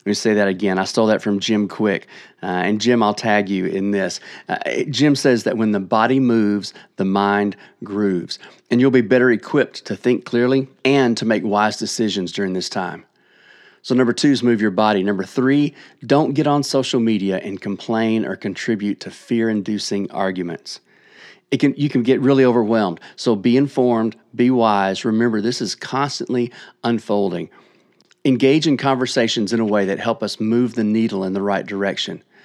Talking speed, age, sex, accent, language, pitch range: 185 wpm, 40-59, male, American, English, 100-125 Hz